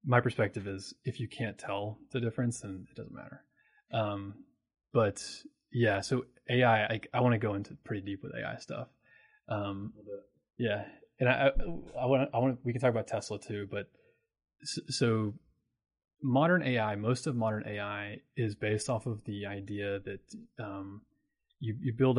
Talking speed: 160 wpm